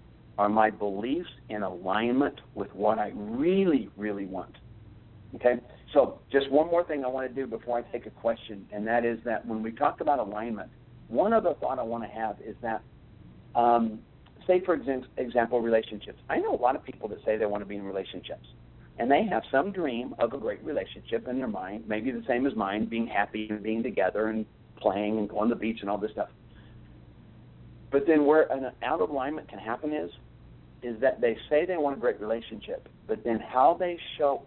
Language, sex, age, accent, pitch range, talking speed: English, male, 50-69, American, 105-135 Hz, 205 wpm